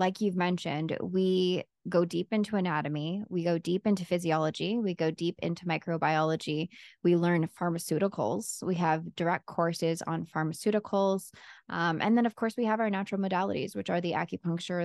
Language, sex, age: English, female, 20-39